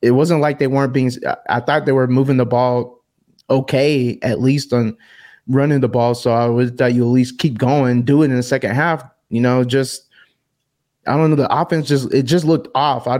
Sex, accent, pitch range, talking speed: male, American, 120-135 Hz, 225 wpm